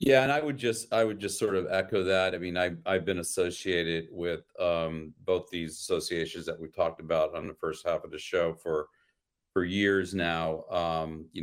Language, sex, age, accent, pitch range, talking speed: English, male, 40-59, American, 80-95 Hz, 210 wpm